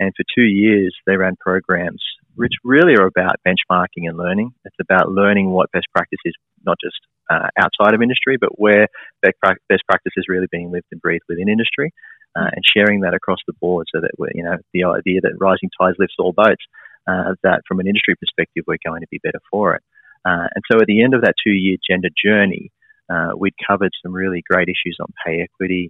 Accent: Australian